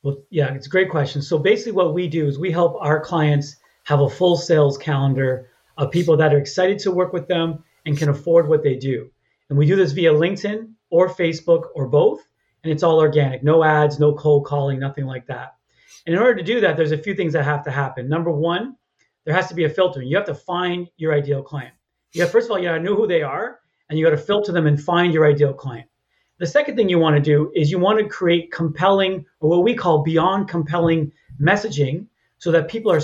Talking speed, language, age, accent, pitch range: 240 wpm, English, 40-59, American, 150-180 Hz